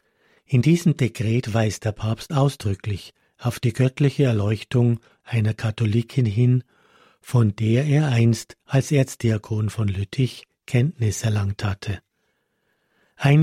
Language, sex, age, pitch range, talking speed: German, male, 50-69, 110-130 Hz, 115 wpm